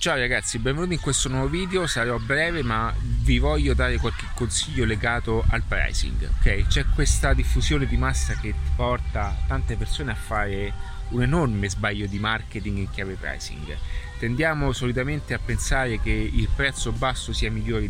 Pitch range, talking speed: 95-130 Hz, 160 wpm